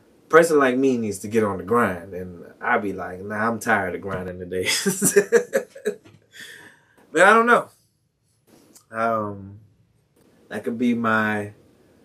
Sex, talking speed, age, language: male, 140 wpm, 20-39, English